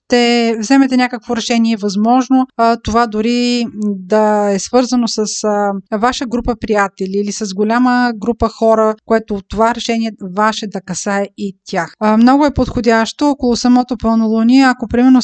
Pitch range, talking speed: 200-240 Hz, 150 wpm